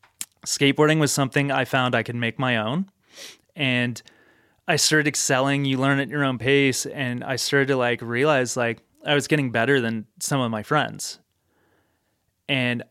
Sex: male